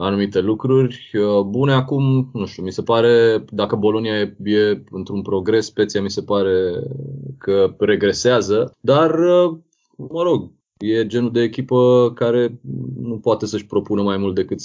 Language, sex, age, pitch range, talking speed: Romanian, male, 20-39, 100-125 Hz, 150 wpm